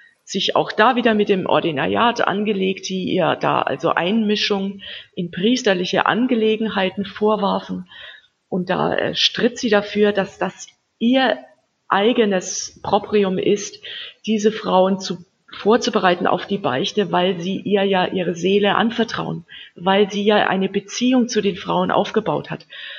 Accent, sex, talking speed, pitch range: German, female, 135 wpm, 180-225 Hz